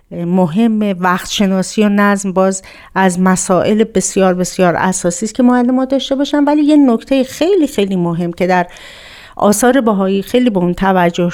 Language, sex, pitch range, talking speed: Persian, female, 180-230 Hz, 165 wpm